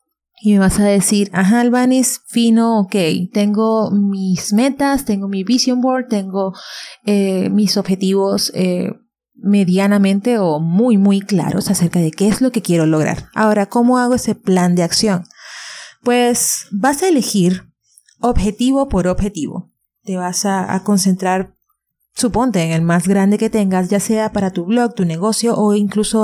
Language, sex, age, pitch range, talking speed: English, female, 30-49, 190-240 Hz, 160 wpm